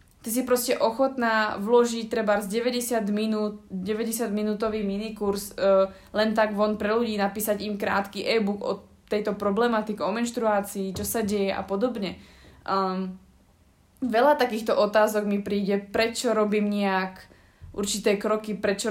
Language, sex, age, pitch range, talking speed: Slovak, female, 20-39, 200-225 Hz, 140 wpm